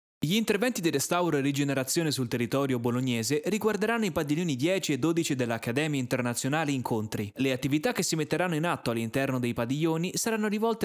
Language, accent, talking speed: Italian, native, 165 wpm